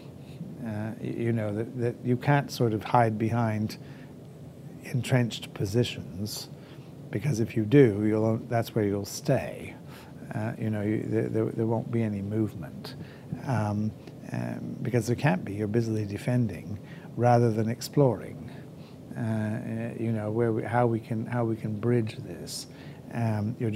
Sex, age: male, 60-79